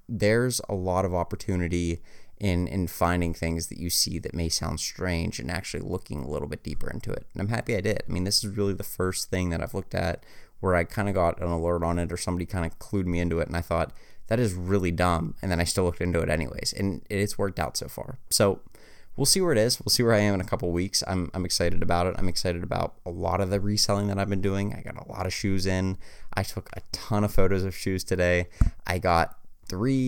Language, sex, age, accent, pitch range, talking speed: English, male, 20-39, American, 85-100 Hz, 265 wpm